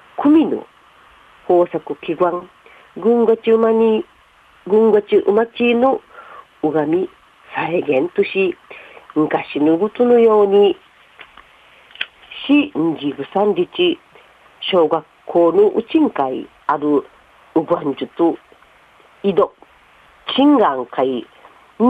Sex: female